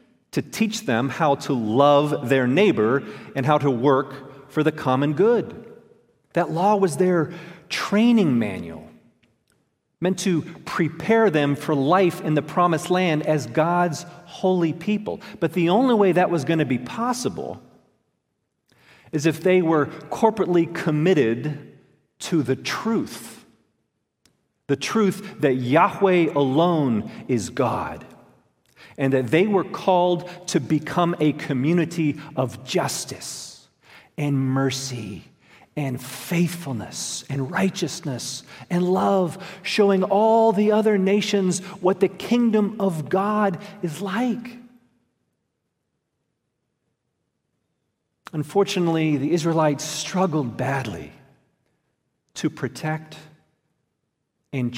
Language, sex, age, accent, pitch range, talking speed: English, male, 40-59, American, 145-190 Hz, 110 wpm